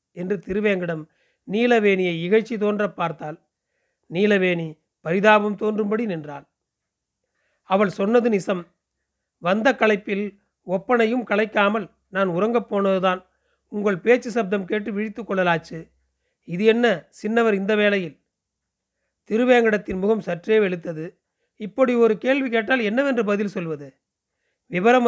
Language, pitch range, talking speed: Tamil, 185-225 Hz, 105 wpm